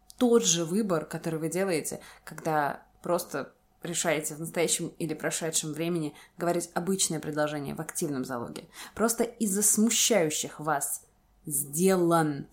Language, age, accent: Russian, 20-39, native